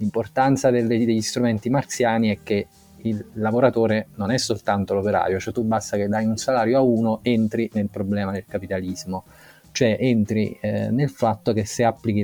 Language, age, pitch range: Italian, 20-39, 100-120 Hz